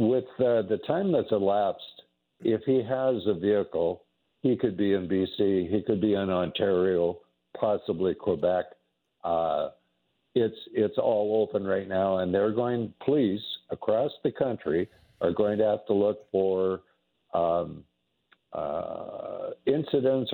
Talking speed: 140 wpm